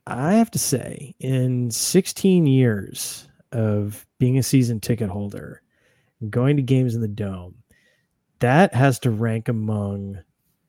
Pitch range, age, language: 110-140 Hz, 30-49, English